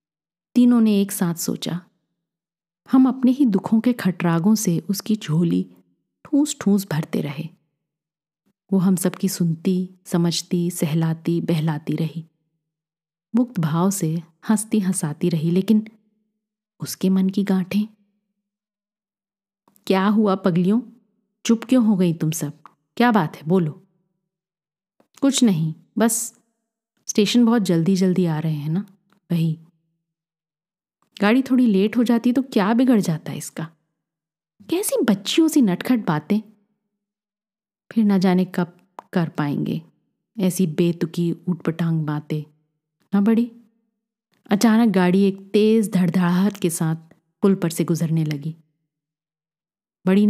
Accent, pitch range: native, 165-210 Hz